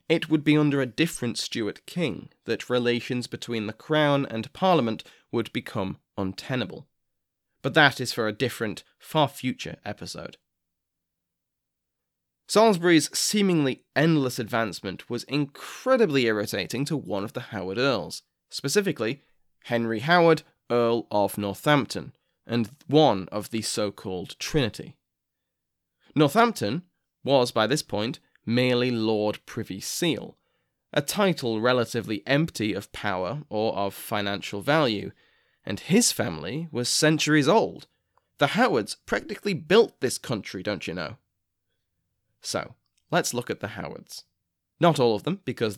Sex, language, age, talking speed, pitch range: male, English, 20-39, 125 wpm, 105-145 Hz